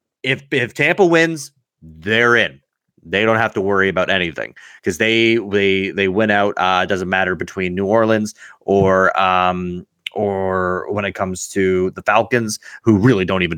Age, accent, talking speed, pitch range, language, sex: 30-49, American, 170 wpm, 90-110 Hz, English, male